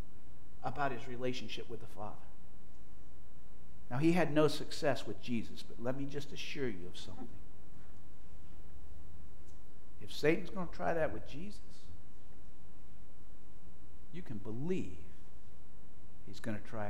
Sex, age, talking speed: male, 60-79, 130 wpm